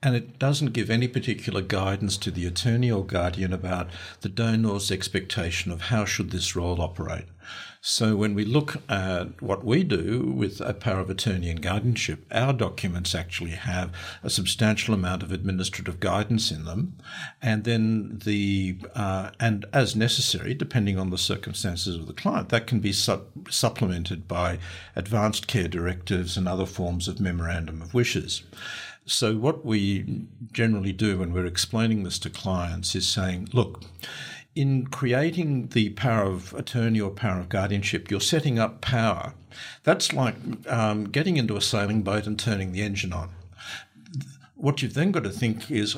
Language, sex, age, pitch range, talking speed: English, male, 60-79, 95-120 Hz, 160 wpm